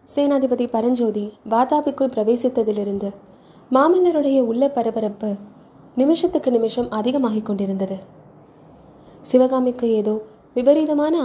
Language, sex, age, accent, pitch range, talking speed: Tamil, female, 20-39, native, 210-265 Hz, 75 wpm